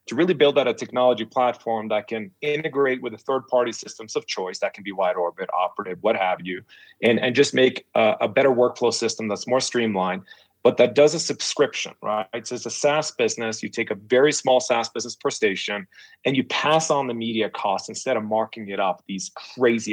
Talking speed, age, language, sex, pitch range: 210 wpm, 30-49, English, male, 105-125 Hz